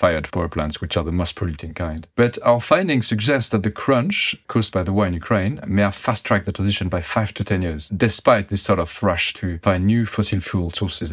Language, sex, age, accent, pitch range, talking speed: English, male, 30-49, French, 90-115 Hz, 230 wpm